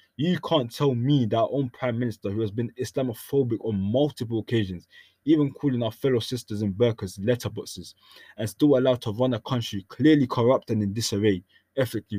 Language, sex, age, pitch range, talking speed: English, male, 20-39, 105-130 Hz, 180 wpm